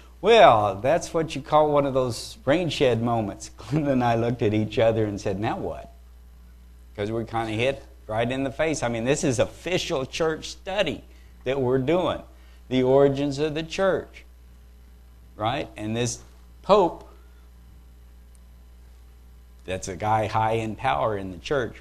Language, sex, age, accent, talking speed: English, male, 50-69, American, 165 wpm